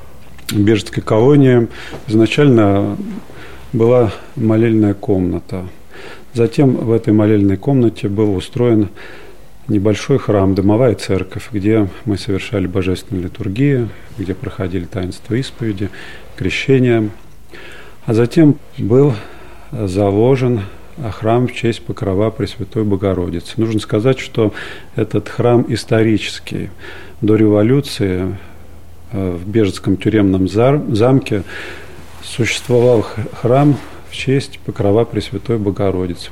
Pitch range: 95-120 Hz